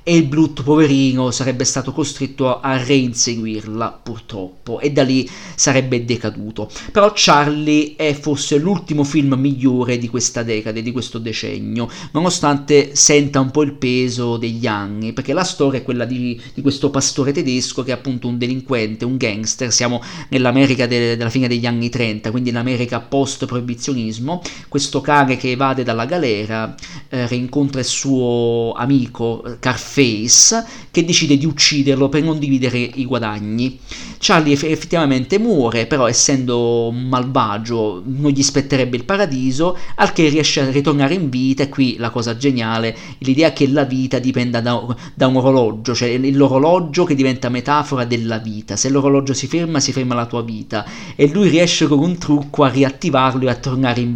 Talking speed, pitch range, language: 160 wpm, 120-145 Hz, Italian